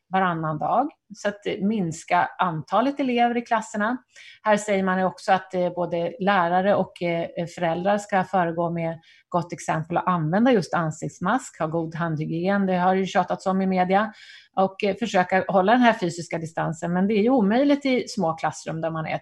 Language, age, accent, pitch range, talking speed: Swedish, 30-49, native, 170-220 Hz, 170 wpm